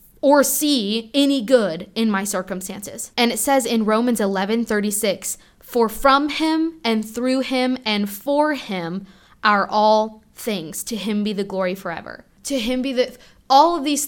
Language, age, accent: English, 10-29, American